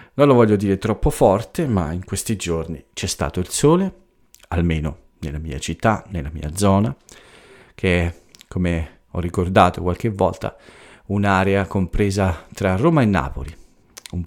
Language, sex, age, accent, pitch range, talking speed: Italian, male, 40-59, native, 90-110 Hz, 145 wpm